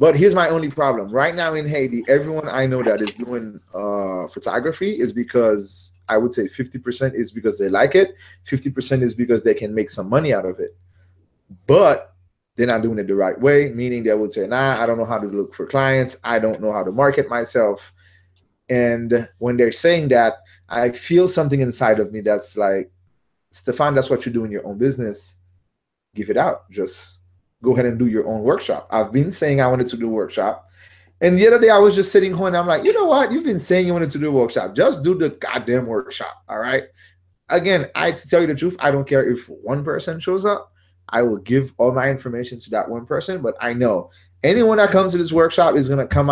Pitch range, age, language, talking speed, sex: 105-150 Hz, 20-39, English, 230 wpm, male